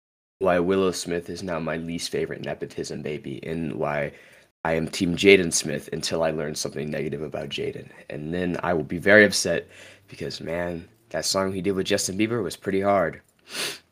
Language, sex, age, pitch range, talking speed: English, male, 20-39, 80-110 Hz, 185 wpm